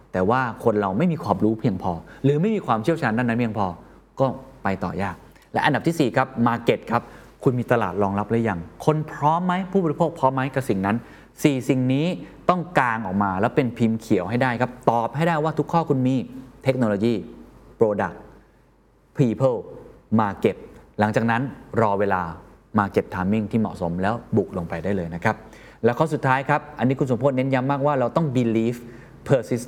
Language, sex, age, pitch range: Thai, male, 20-39, 100-140 Hz